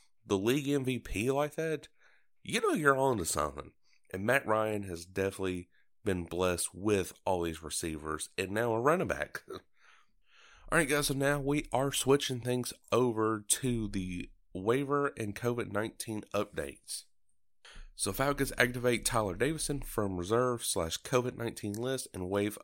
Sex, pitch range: male, 95-125 Hz